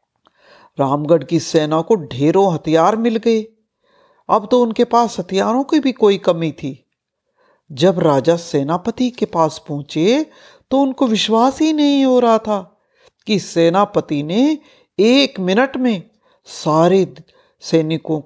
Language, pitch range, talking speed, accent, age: Hindi, 165-250 Hz, 130 wpm, native, 50-69